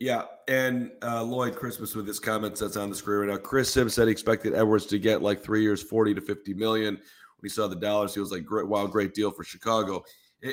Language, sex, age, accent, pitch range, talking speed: English, male, 40-59, American, 100-120 Hz, 250 wpm